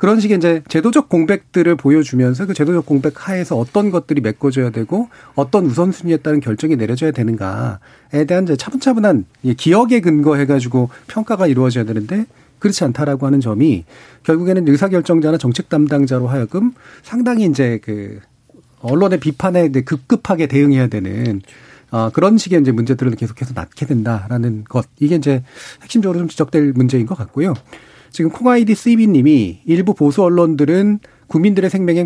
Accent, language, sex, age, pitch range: native, Korean, male, 40-59, 125-180 Hz